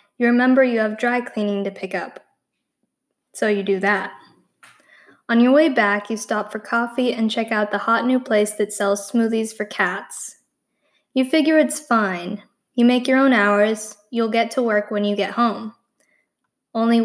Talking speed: 180 wpm